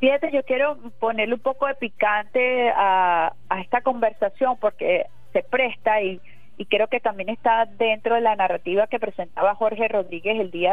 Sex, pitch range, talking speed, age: female, 195-255 Hz, 175 wpm, 30-49